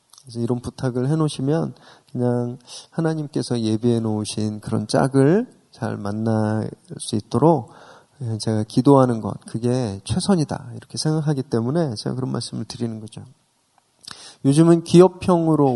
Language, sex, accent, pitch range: Korean, male, native, 115-155 Hz